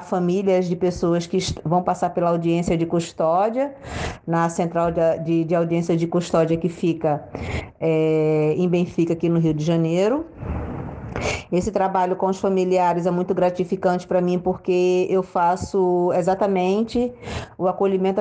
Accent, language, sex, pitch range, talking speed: Brazilian, Portuguese, female, 165-195 Hz, 140 wpm